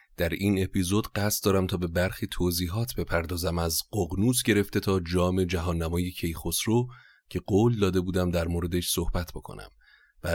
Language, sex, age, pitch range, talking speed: Persian, male, 30-49, 90-100 Hz, 155 wpm